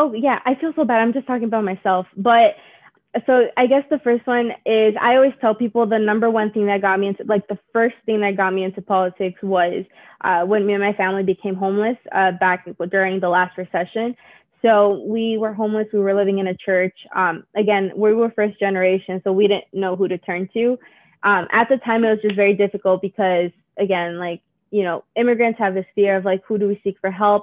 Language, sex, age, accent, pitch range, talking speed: English, female, 20-39, American, 185-220 Hz, 230 wpm